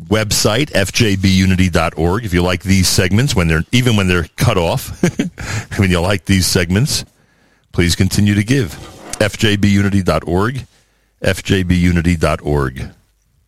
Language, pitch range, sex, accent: English, 85-105 Hz, male, American